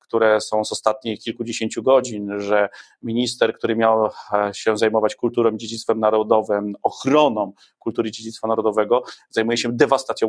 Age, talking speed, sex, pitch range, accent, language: 30-49, 135 wpm, male, 110-120 Hz, native, Polish